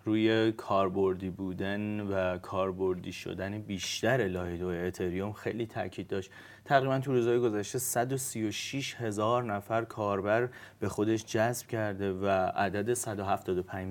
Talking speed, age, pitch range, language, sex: 120 wpm, 30-49, 100-125 Hz, Persian, male